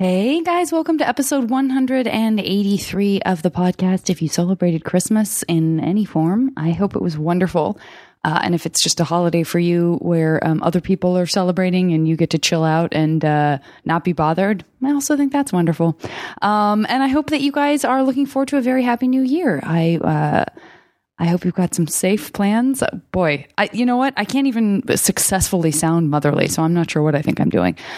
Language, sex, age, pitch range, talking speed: English, female, 20-39, 165-225 Hz, 210 wpm